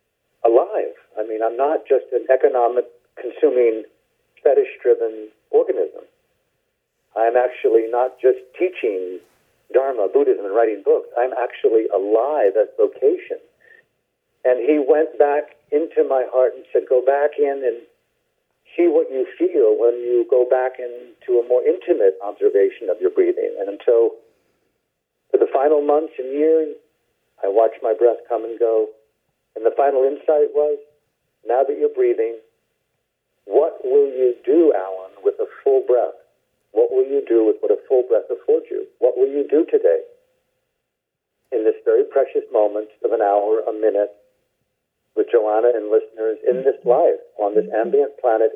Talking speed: 155 wpm